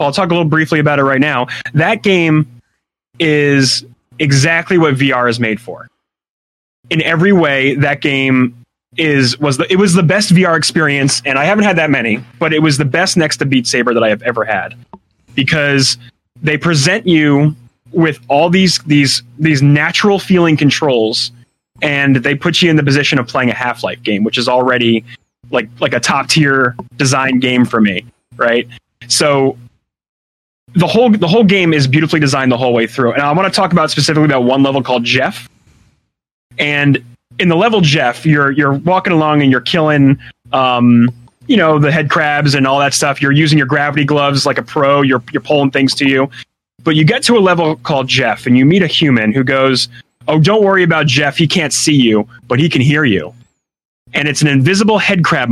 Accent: American